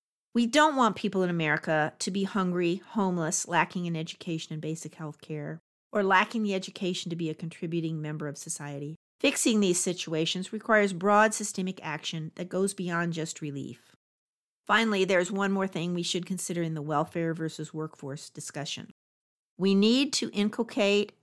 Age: 50-69